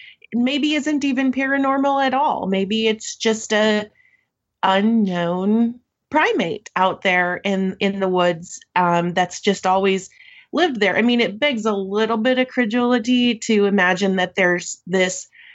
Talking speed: 145 wpm